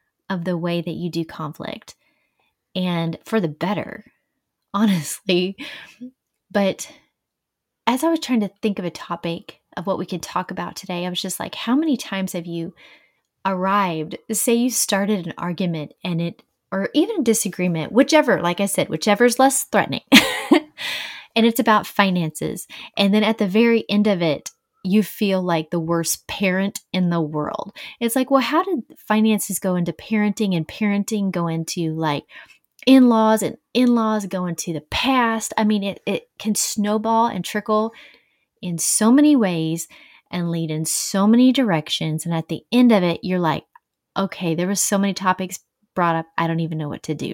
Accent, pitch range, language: American, 170-225 Hz, English